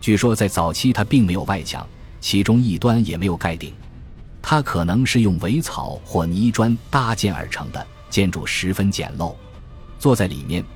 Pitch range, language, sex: 85-115 Hz, Chinese, male